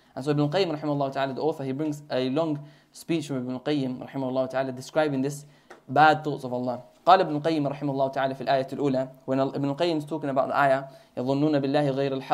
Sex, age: male, 20-39